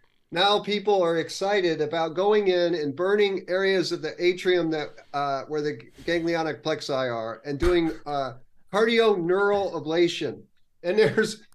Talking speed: 145 wpm